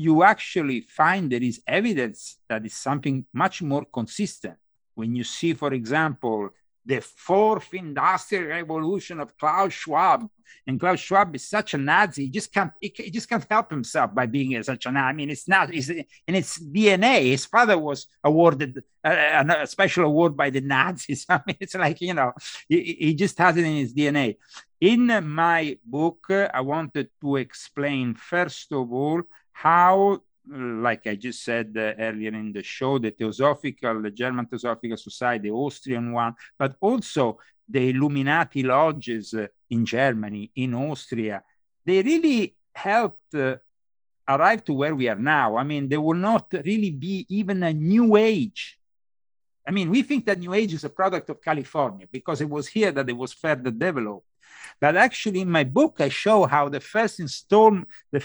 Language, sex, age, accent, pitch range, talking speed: English, male, 50-69, Italian, 130-185 Hz, 170 wpm